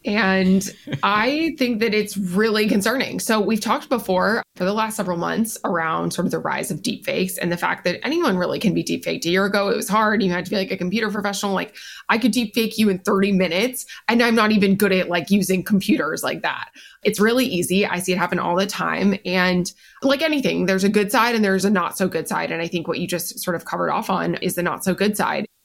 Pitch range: 180-215 Hz